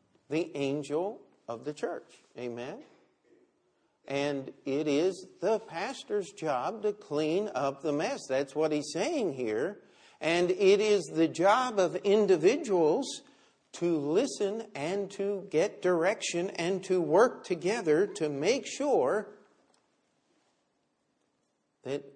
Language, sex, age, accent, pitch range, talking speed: English, male, 50-69, American, 155-215 Hz, 115 wpm